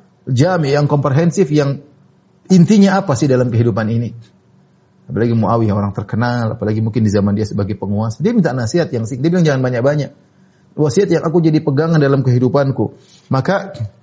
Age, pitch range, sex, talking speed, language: 30-49, 130-175 Hz, male, 165 wpm, Indonesian